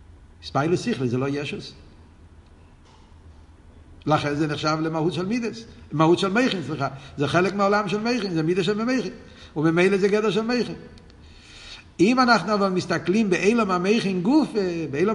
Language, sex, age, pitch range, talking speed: Hebrew, male, 60-79, 135-215 Hz, 145 wpm